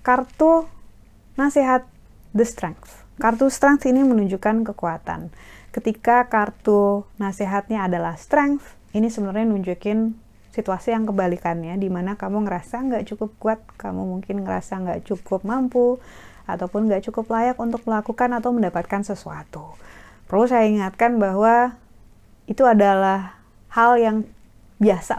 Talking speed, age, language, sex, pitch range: 120 wpm, 30-49, Indonesian, female, 185-230 Hz